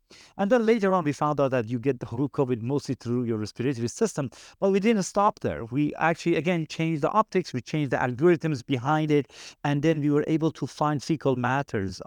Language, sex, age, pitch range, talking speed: English, male, 50-69, 120-150 Hz, 215 wpm